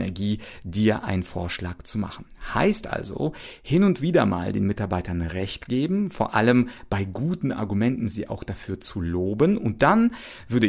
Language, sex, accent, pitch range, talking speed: German, male, German, 95-140 Hz, 165 wpm